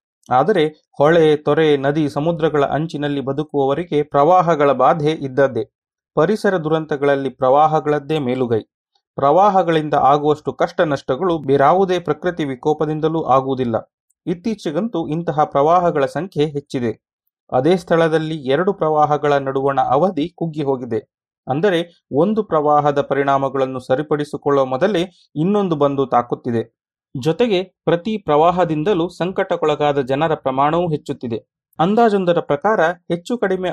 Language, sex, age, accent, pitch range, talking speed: Kannada, male, 30-49, native, 145-180 Hz, 100 wpm